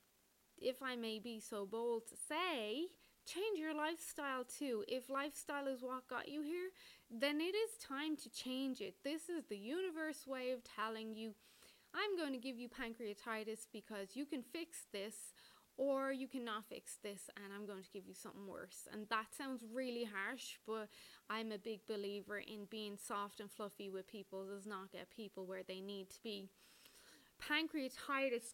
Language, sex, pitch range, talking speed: English, female, 205-265 Hz, 180 wpm